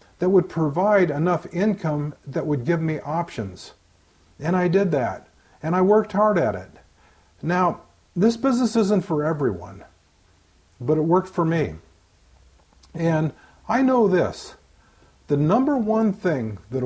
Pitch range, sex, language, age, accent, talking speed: 130-185 Hz, male, English, 50-69, American, 140 wpm